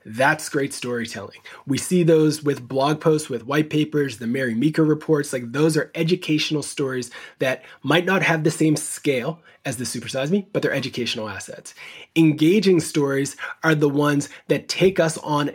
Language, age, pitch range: English, 20-39, 135-160 Hz